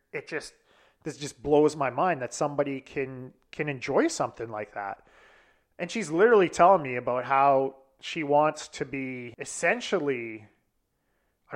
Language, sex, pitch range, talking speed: English, male, 135-170 Hz, 145 wpm